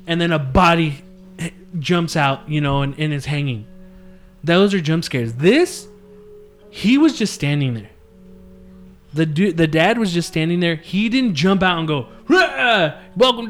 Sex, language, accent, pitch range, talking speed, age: male, English, American, 145-195 Hz, 165 wpm, 20-39